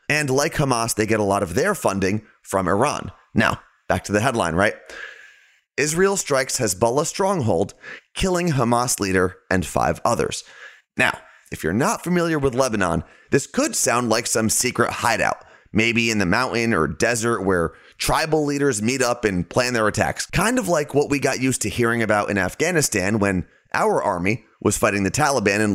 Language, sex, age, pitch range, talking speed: English, male, 30-49, 100-140 Hz, 180 wpm